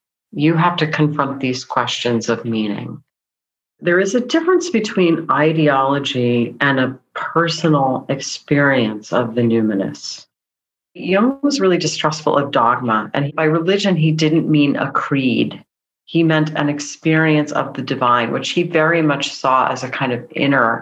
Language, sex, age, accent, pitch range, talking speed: English, female, 40-59, American, 125-165 Hz, 150 wpm